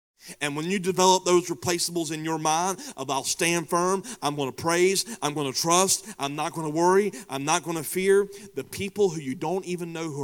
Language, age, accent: English, 30-49, American